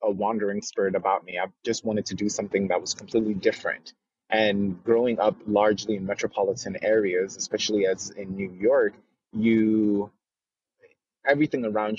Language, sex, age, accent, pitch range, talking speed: English, male, 20-39, American, 100-115 Hz, 150 wpm